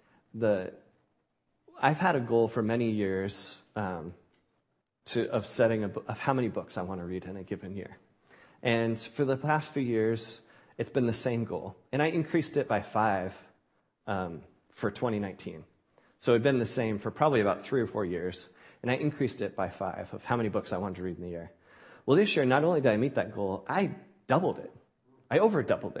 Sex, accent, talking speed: male, American, 210 wpm